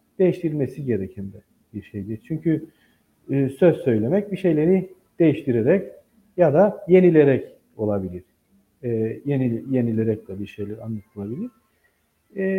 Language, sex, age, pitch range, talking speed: Turkish, male, 50-69, 110-175 Hz, 115 wpm